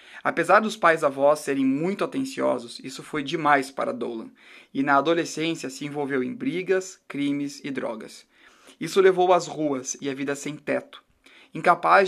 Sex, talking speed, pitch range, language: male, 160 wpm, 155-210 Hz, Portuguese